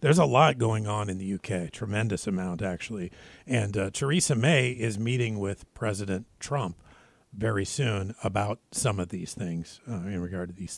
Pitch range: 100-135 Hz